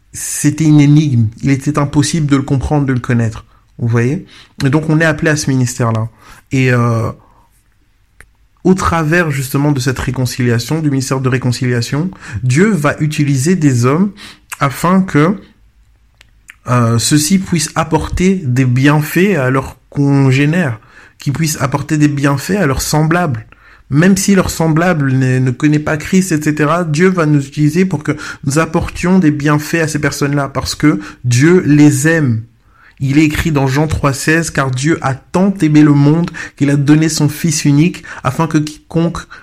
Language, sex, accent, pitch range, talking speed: French, male, French, 130-160 Hz, 165 wpm